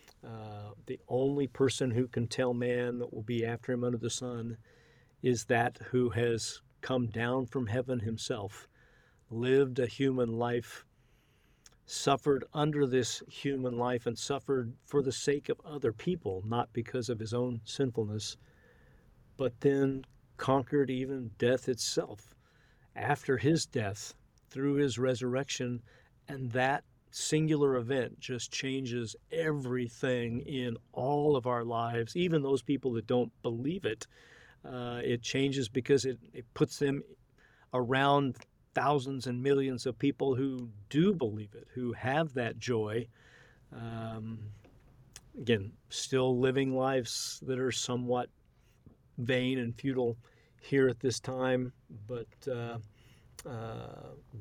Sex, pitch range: male, 120-135 Hz